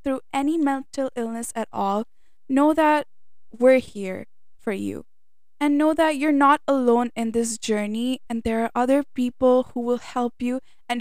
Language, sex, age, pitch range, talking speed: English, female, 10-29, 225-275 Hz, 170 wpm